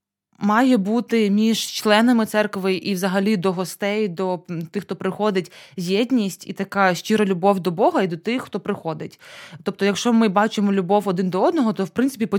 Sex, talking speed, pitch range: female, 180 wpm, 190-225 Hz